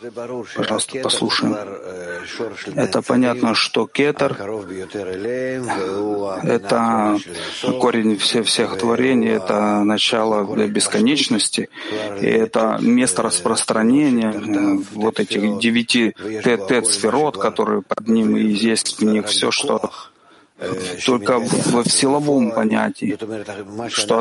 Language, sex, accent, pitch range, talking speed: Russian, male, native, 110-140 Hz, 95 wpm